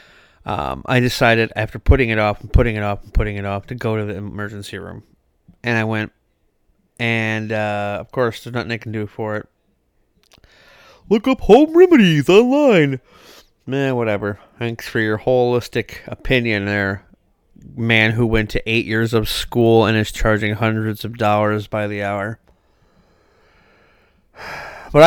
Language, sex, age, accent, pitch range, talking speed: English, male, 30-49, American, 105-120 Hz, 160 wpm